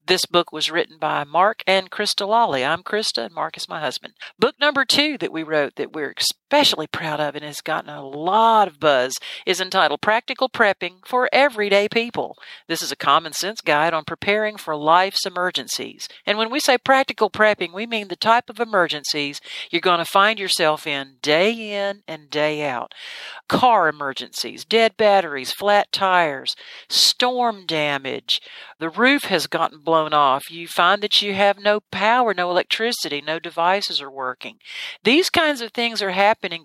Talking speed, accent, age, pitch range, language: 175 wpm, American, 50-69, 160-225 Hz, English